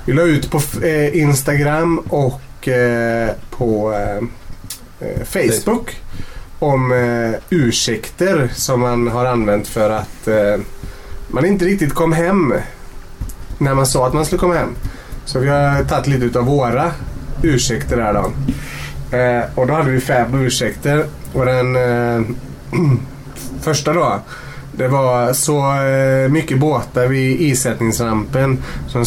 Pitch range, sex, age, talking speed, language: 120-150 Hz, male, 30-49, 120 wpm, Swedish